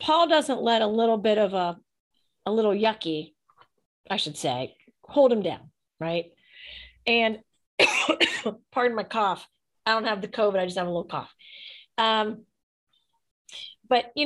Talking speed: 150 wpm